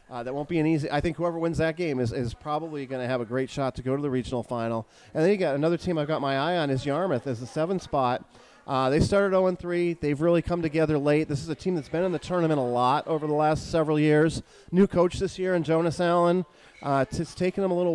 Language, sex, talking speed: English, male, 275 wpm